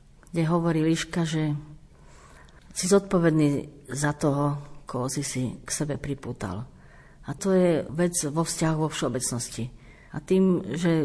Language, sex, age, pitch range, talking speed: Slovak, female, 50-69, 140-165 Hz, 135 wpm